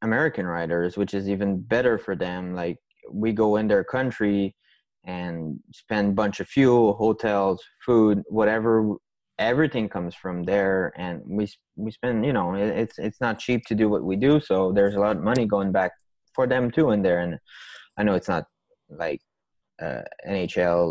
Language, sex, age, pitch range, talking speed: English, male, 20-39, 100-115 Hz, 180 wpm